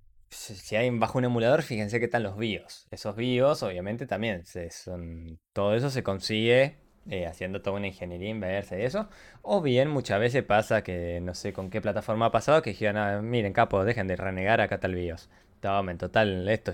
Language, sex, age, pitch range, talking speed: Spanish, male, 20-39, 90-115 Hz, 205 wpm